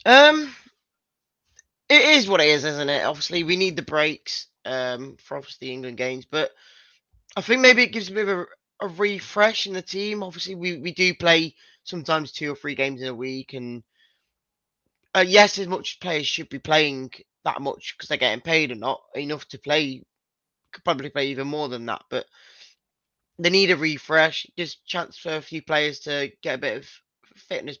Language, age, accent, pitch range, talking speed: English, 20-39, British, 140-180 Hz, 200 wpm